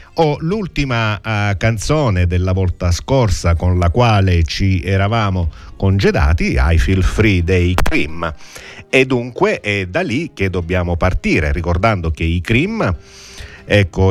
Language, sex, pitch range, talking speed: Italian, male, 90-110 Hz, 130 wpm